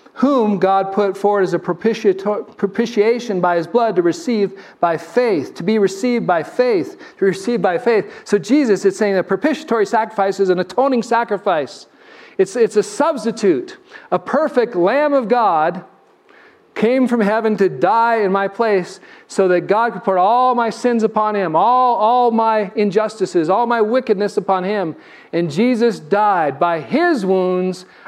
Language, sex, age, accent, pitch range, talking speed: English, male, 40-59, American, 190-235 Hz, 160 wpm